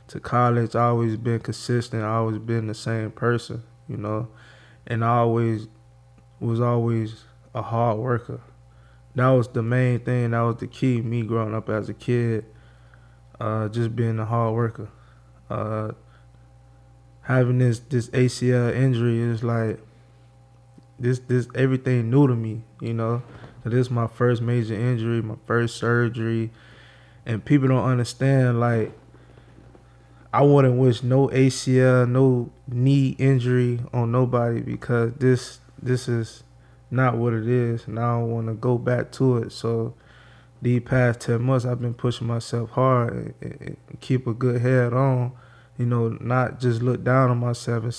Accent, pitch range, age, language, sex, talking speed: American, 115-125 Hz, 20-39, English, male, 160 wpm